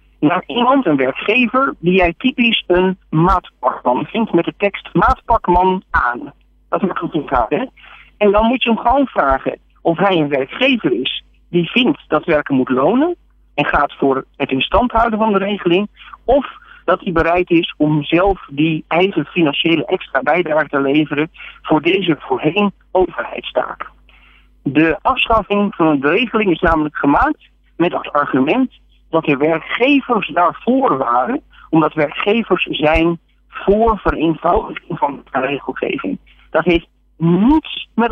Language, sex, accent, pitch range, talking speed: Dutch, male, Dutch, 160-230 Hz, 150 wpm